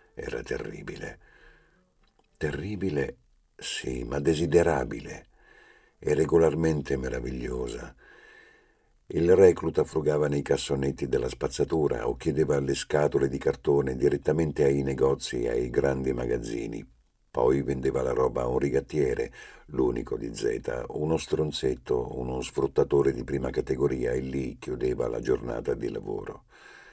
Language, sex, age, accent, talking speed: Italian, male, 50-69, native, 120 wpm